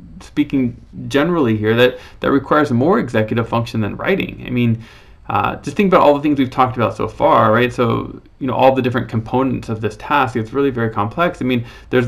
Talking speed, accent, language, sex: 215 wpm, American, English, male